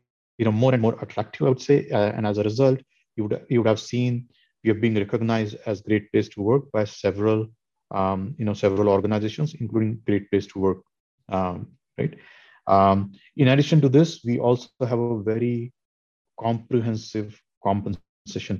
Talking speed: 175 wpm